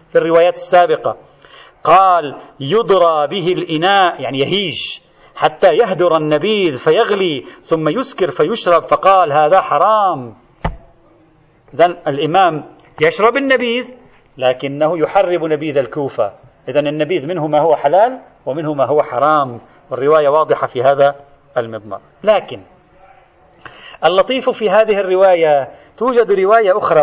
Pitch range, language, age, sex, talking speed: 155-230 Hz, Arabic, 40-59, male, 110 wpm